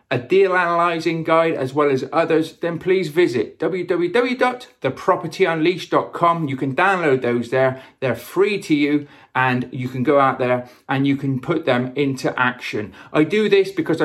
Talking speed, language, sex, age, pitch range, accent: 160 wpm, English, male, 40-59, 130-180 Hz, British